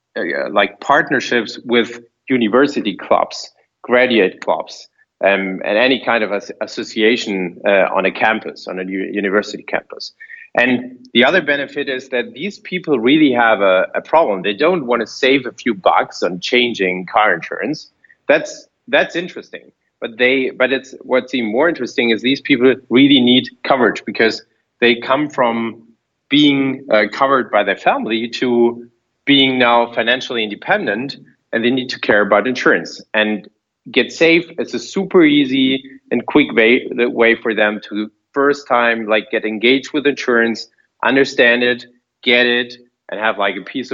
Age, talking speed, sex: 30-49, 165 wpm, male